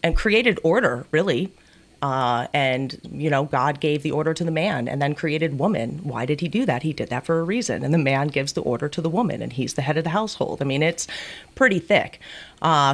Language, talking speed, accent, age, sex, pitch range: English, 240 wpm, American, 30-49, female, 140-185 Hz